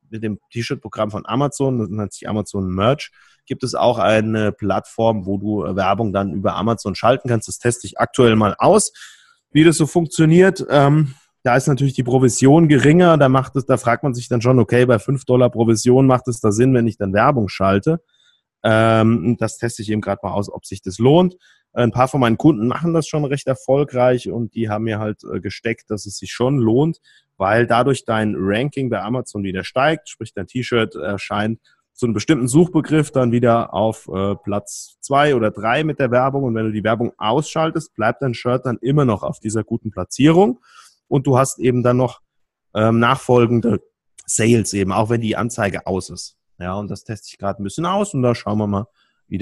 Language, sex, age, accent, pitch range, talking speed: German, male, 30-49, German, 105-135 Hz, 200 wpm